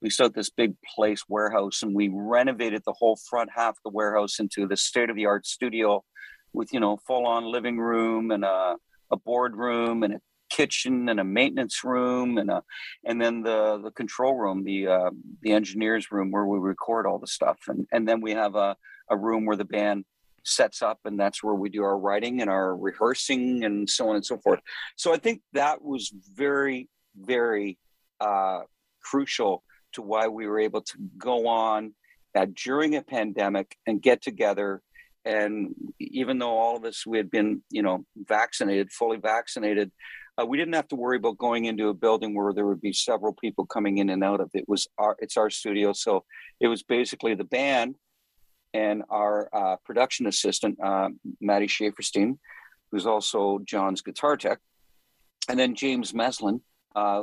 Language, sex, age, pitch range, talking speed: English, male, 50-69, 100-120 Hz, 190 wpm